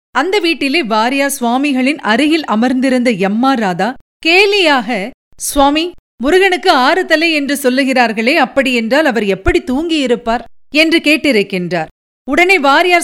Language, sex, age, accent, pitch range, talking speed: Tamil, female, 50-69, native, 235-310 Hz, 105 wpm